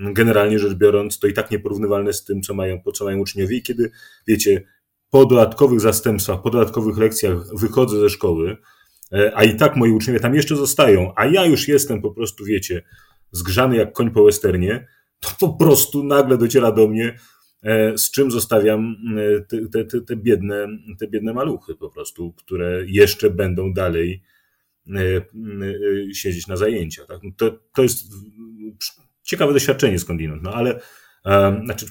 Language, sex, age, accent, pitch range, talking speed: Polish, male, 30-49, native, 95-115 Hz, 155 wpm